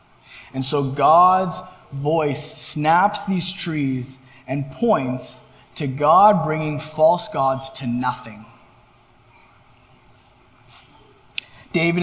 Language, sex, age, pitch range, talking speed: English, male, 20-39, 135-190 Hz, 85 wpm